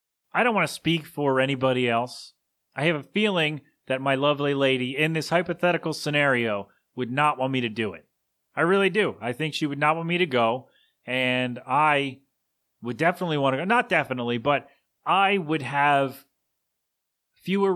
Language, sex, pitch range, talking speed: English, male, 130-165 Hz, 180 wpm